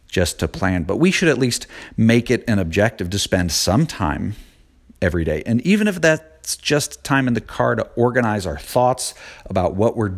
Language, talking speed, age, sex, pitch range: English, 200 wpm, 40-59, male, 95-115 Hz